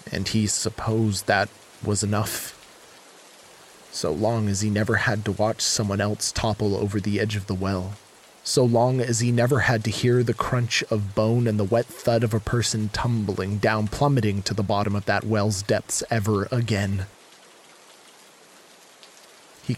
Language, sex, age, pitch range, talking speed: English, male, 20-39, 100-110 Hz, 165 wpm